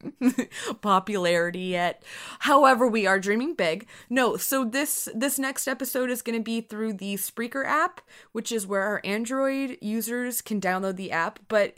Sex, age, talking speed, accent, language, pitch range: female, 20-39, 165 wpm, American, English, 185-265 Hz